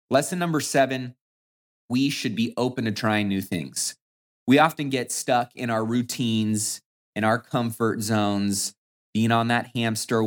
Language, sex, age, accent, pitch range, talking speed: English, male, 30-49, American, 110-145 Hz, 150 wpm